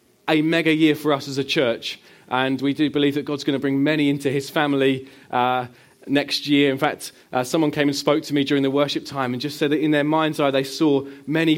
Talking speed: 250 wpm